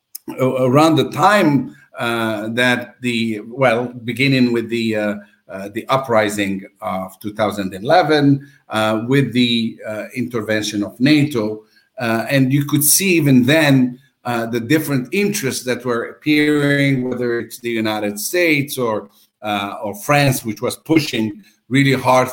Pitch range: 110-135 Hz